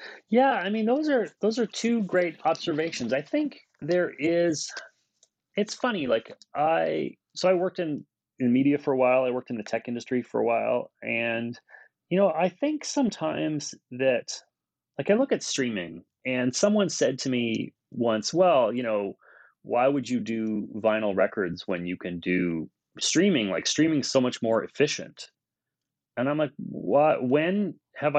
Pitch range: 110-170 Hz